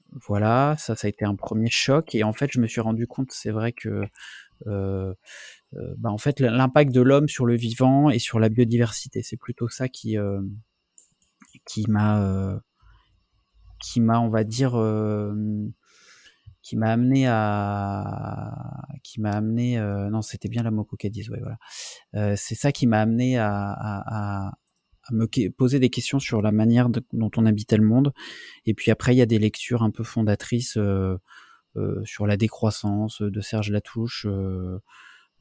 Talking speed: 180 wpm